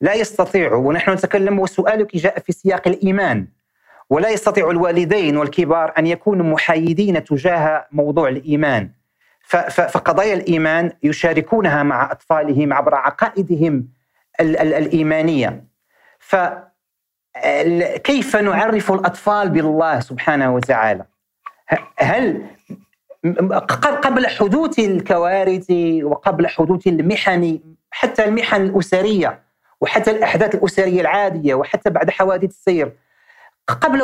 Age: 40-59